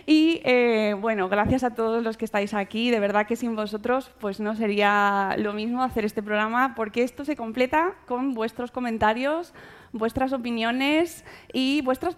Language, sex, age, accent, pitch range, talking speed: Spanish, female, 20-39, Spanish, 225-295 Hz, 170 wpm